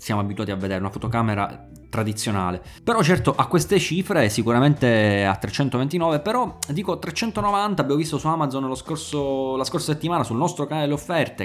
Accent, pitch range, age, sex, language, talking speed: native, 115-165 Hz, 20-39, male, Italian, 170 wpm